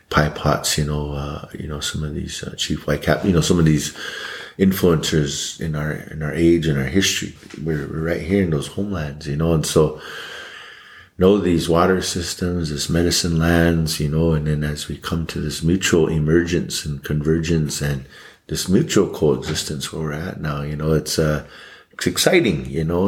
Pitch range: 75-85 Hz